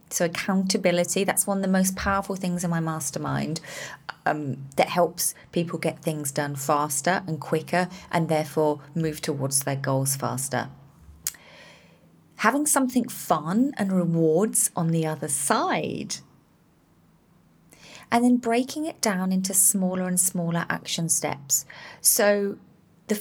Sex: female